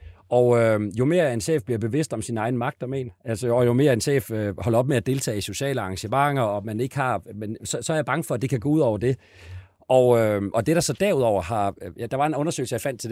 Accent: native